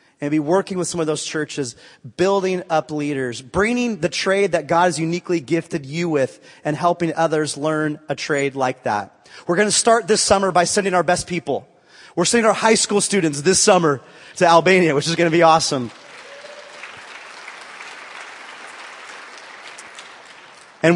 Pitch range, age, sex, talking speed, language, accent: 155-205 Hz, 30-49, male, 165 wpm, English, American